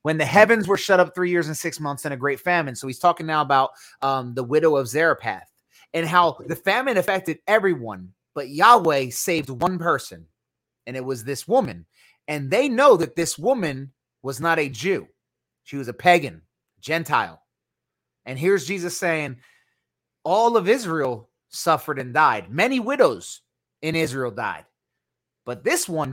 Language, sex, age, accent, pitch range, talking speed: English, male, 30-49, American, 135-185 Hz, 170 wpm